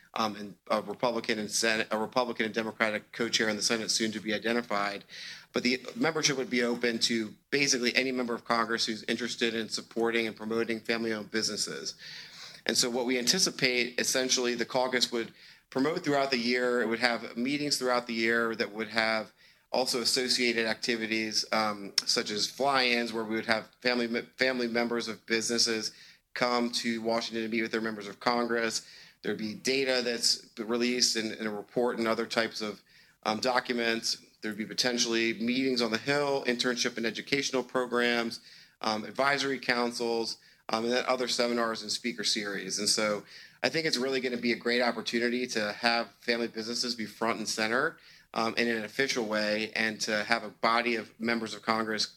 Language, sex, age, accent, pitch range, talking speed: English, male, 30-49, American, 110-125 Hz, 180 wpm